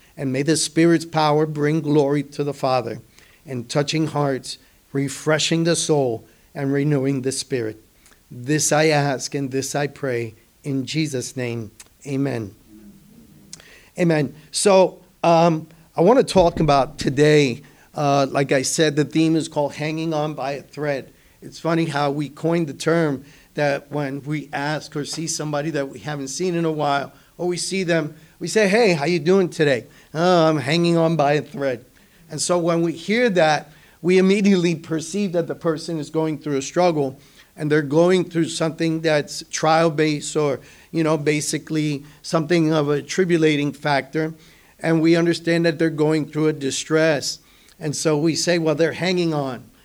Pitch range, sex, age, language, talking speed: 140-165 Hz, male, 50-69, English, 170 wpm